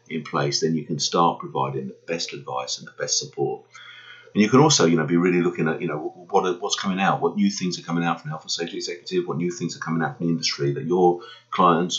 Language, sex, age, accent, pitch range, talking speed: English, male, 30-49, British, 70-95 Hz, 265 wpm